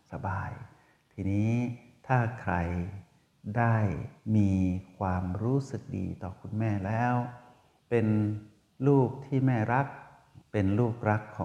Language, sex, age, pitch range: Thai, male, 60-79, 95-125 Hz